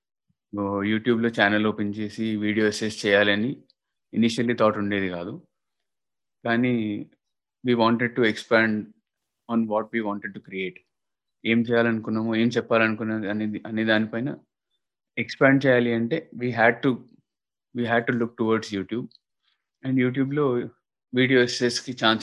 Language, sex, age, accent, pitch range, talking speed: Telugu, male, 20-39, native, 110-125 Hz, 125 wpm